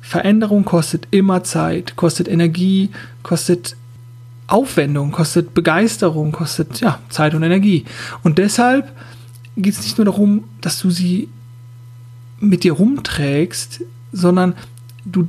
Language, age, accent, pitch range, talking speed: German, 40-59, German, 120-190 Hz, 115 wpm